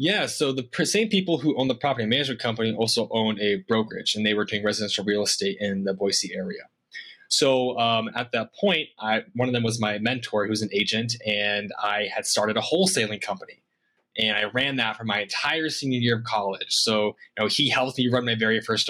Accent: American